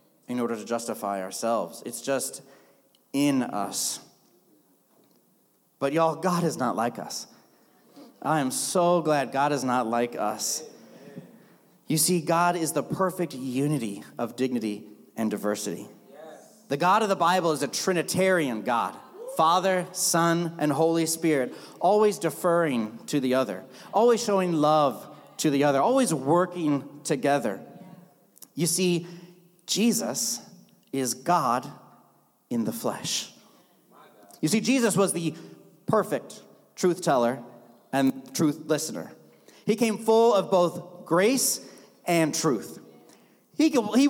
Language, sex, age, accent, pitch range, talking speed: English, male, 30-49, American, 145-190 Hz, 125 wpm